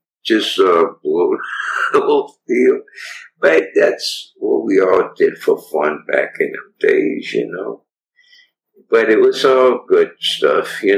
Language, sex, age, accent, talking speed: English, male, 60-79, American, 140 wpm